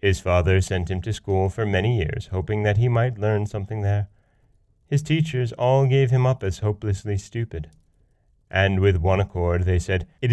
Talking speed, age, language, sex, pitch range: 185 wpm, 30-49, English, male, 85-120 Hz